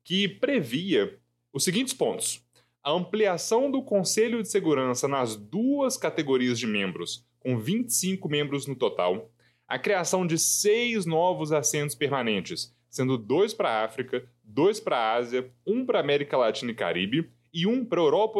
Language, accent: Portuguese, Brazilian